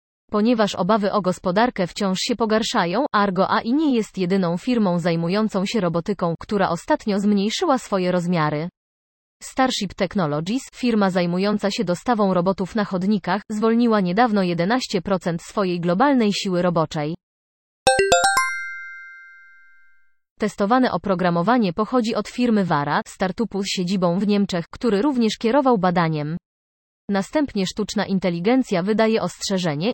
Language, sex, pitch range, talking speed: Polish, female, 180-220 Hz, 115 wpm